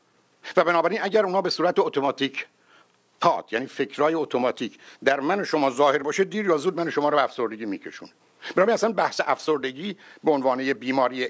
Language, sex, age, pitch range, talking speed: Persian, male, 60-79, 145-180 Hz, 180 wpm